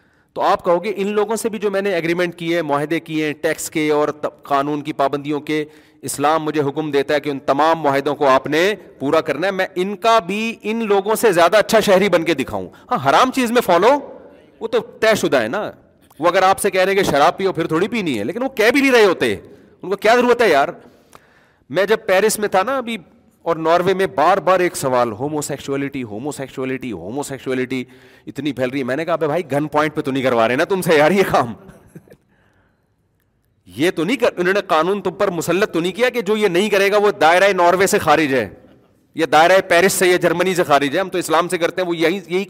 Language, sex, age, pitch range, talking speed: Urdu, male, 40-59, 145-200 Hz, 190 wpm